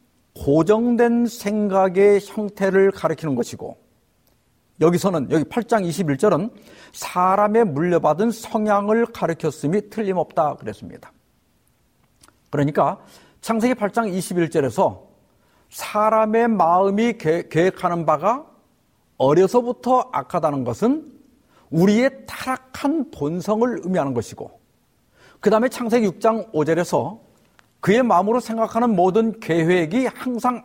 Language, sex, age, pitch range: Korean, male, 50-69, 165-235 Hz